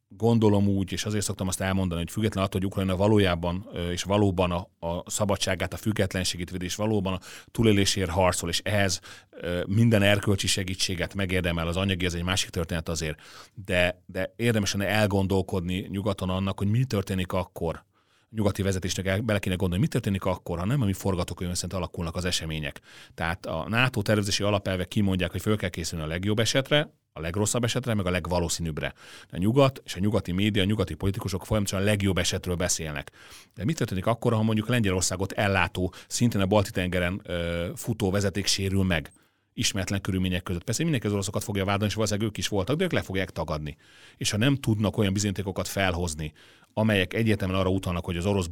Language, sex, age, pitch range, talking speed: Hungarian, male, 30-49, 90-105 Hz, 180 wpm